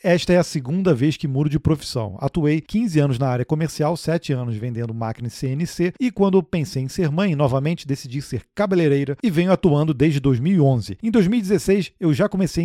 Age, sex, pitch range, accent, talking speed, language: 40-59, male, 145-185 Hz, Brazilian, 195 wpm, Portuguese